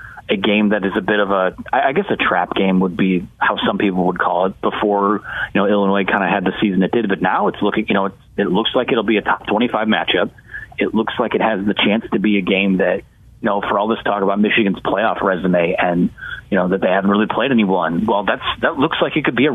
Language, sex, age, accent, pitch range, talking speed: English, male, 30-49, American, 95-110 Hz, 270 wpm